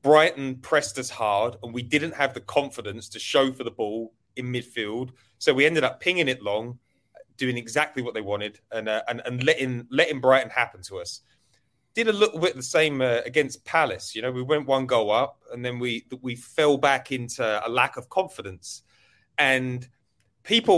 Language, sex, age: English, male, 30-49